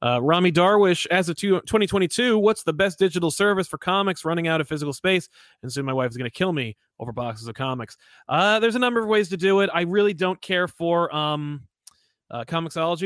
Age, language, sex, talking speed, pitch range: 30-49, English, male, 210 wpm, 140-180 Hz